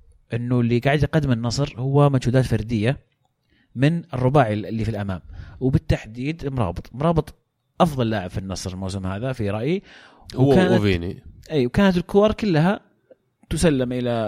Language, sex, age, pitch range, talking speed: Arabic, male, 30-49, 105-140 Hz, 130 wpm